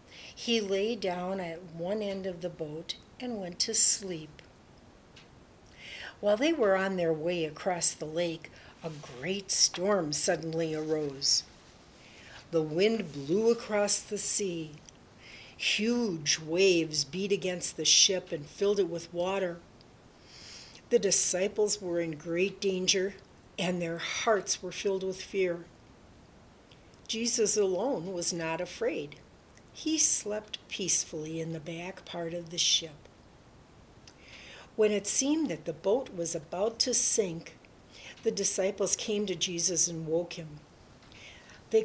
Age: 60-79